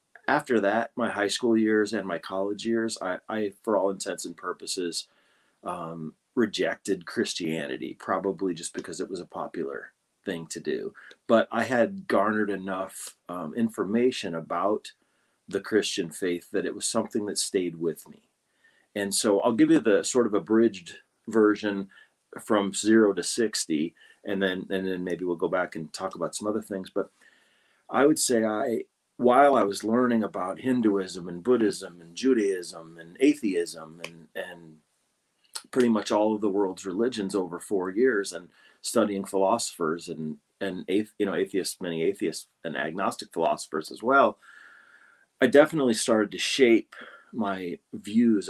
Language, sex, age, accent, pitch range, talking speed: English, male, 40-59, American, 85-110 Hz, 155 wpm